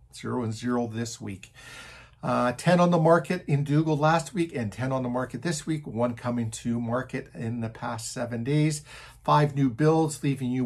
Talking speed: 195 wpm